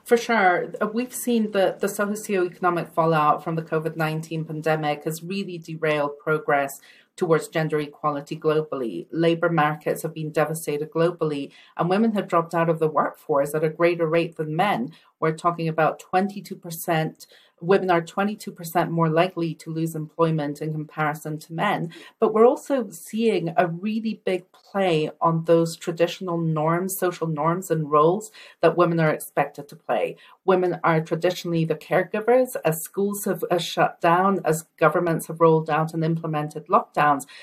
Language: English